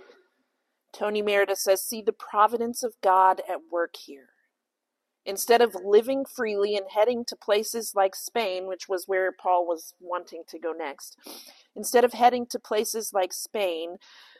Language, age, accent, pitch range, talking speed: English, 40-59, American, 165-215 Hz, 155 wpm